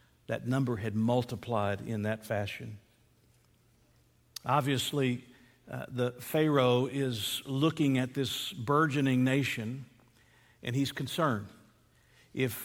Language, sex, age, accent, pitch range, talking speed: English, male, 50-69, American, 115-135 Hz, 100 wpm